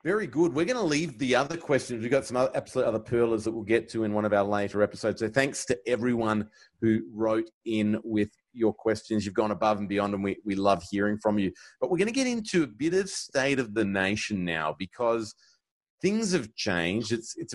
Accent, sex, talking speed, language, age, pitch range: Australian, male, 235 wpm, English, 30-49, 100-130 Hz